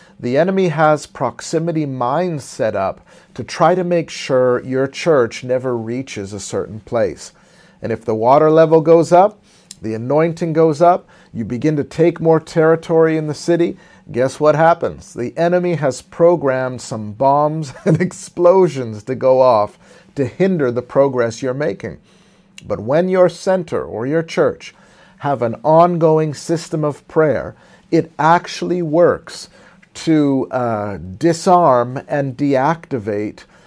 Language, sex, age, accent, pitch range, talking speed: English, male, 40-59, American, 130-170 Hz, 145 wpm